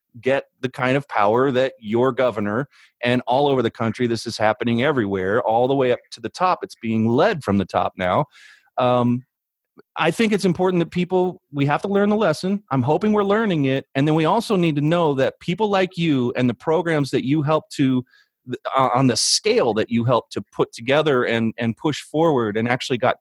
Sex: male